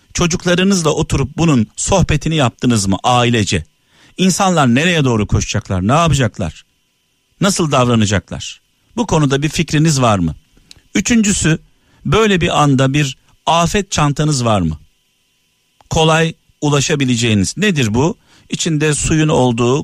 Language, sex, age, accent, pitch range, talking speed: Turkish, male, 50-69, native, 115-155 Hz, 110 wpm